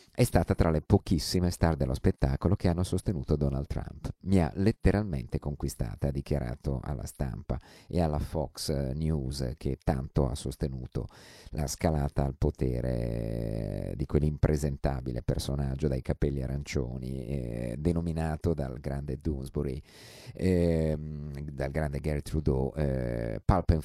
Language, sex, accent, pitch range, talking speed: Italian, male, native, 70-90 Hz, 130 wpm